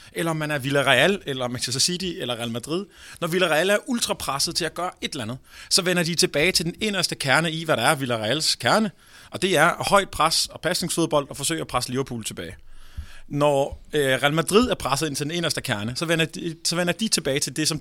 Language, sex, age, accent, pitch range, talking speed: Danish, male, 30-49, native, 140-185 Hz, 230 wpm